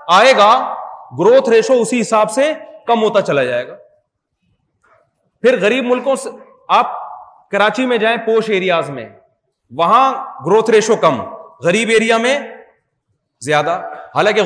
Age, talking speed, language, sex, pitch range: 40-59, 120 wpm, Urdu, male, 180-240 Hz